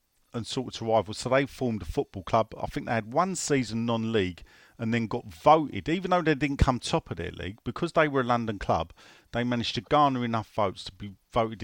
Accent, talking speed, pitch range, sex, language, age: British, 230 wpm, 95-130 Hz, male, English, 40-59